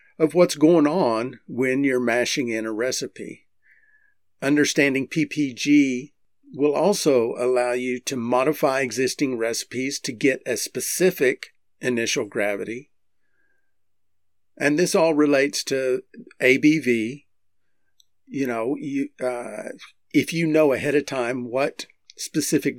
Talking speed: 115 wpm